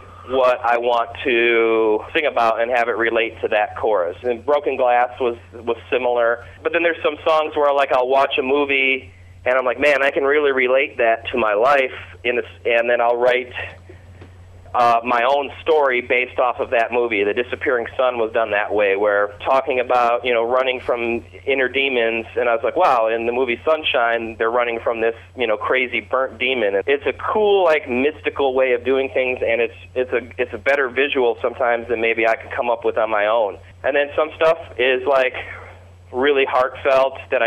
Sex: male